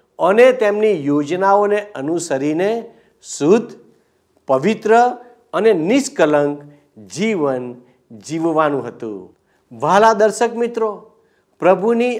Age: 50-69